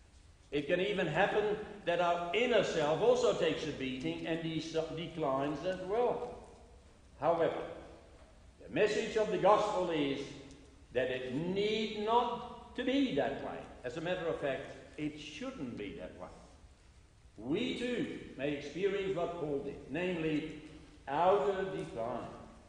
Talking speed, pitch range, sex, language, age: 140 wpm, 135-190 Hz, male, English, 60-79